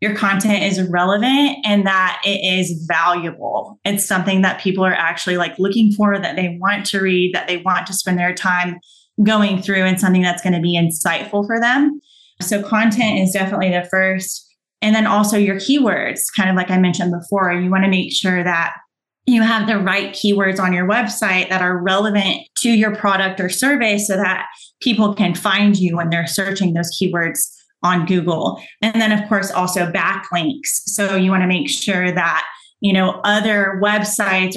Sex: female